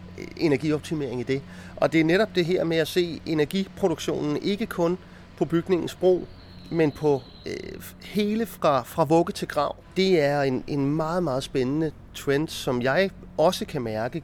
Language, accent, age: Danish, native, 30-49